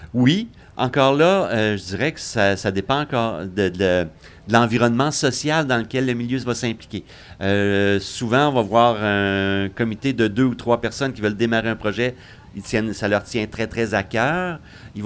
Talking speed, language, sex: 195 wpm, French, male